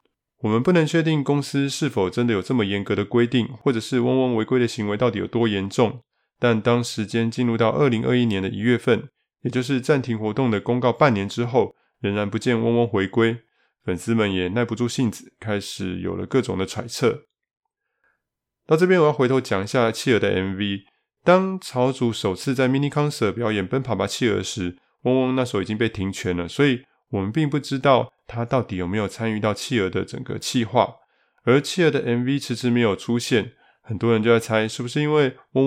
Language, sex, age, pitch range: Chinese, male, 20-39, 110-130 Hz